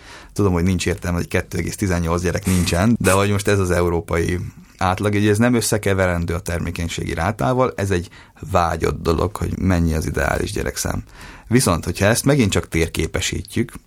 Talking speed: 160 wpm